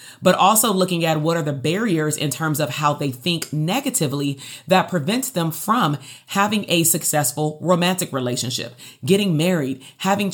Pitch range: 145-180 Hz